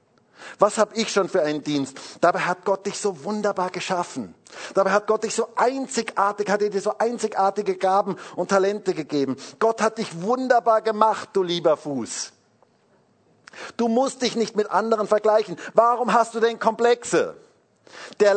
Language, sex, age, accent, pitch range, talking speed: German, male, 50-69, German, 150-225 Hz, 160 wpm